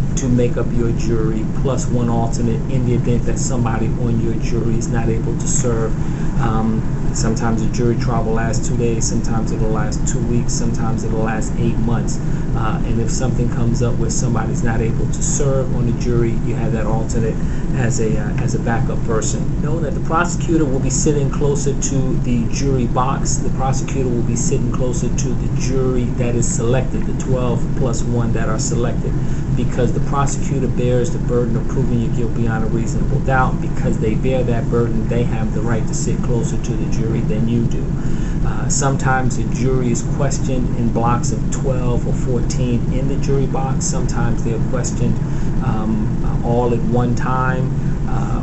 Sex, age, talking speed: male, 40-59, 190 wpm